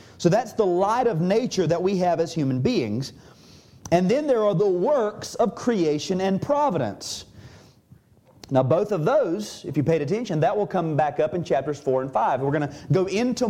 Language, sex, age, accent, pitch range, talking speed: English, male, 40-59, American, 155-230 Hz, 200 wpm